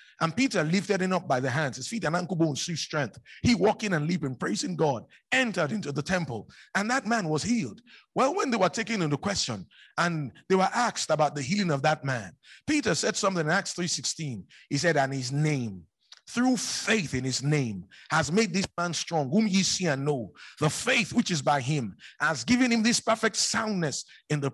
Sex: male